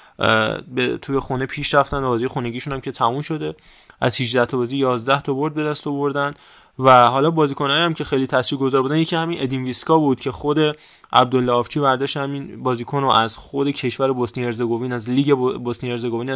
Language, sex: Persian, male